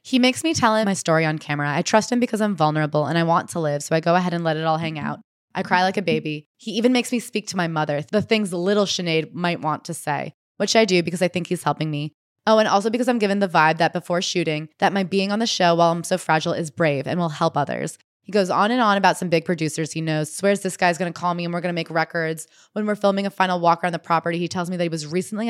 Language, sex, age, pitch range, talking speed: English, female, 20-39, 160-195 Hz, 300 wpm